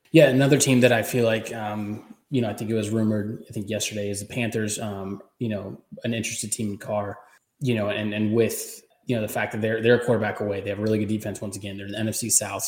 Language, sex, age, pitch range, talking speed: English, male, 20-39, 105-115 Hz, 265 wpm